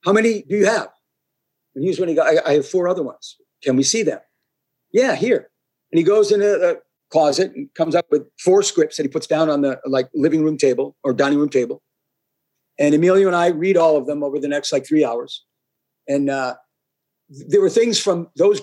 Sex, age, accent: male, 50-69, American